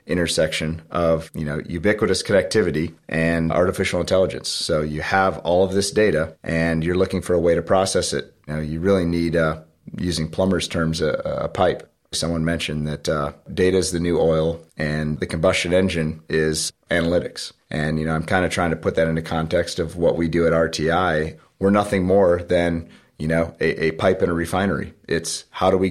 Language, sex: English, male